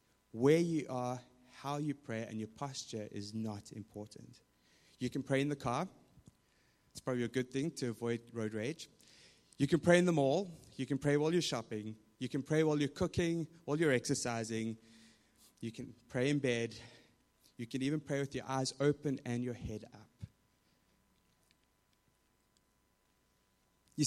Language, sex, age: English, male, 20-39